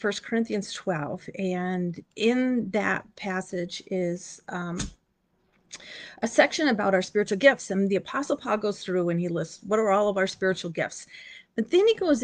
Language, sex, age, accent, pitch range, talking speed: English, female, 40-59, American, 175-230 Hz, 170 wpm